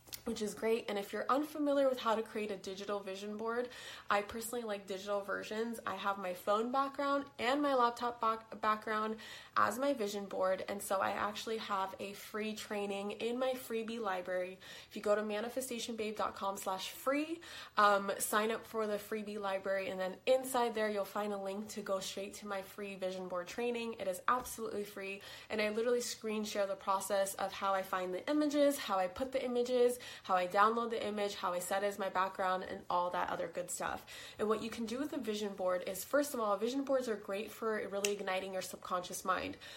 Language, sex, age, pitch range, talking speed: English, female, 20-39, 195-235 Hz, 210 wpm